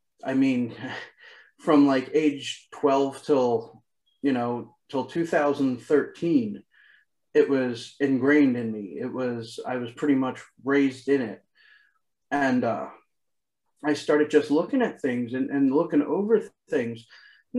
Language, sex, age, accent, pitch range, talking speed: English, male, 30-49, American, 130-150 Hz, 135 wpm